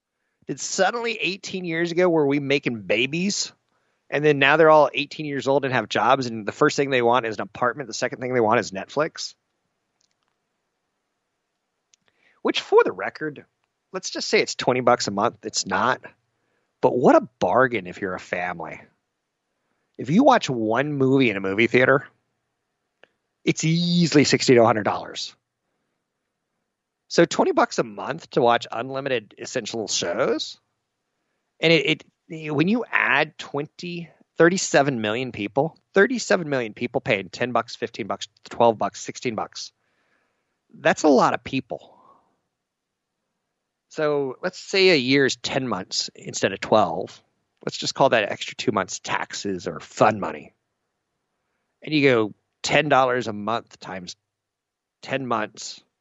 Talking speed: 150 wpm